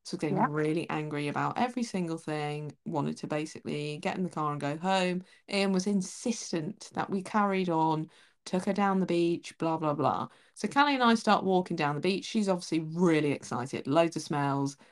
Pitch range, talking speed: 155-235 Hz, 195 wpm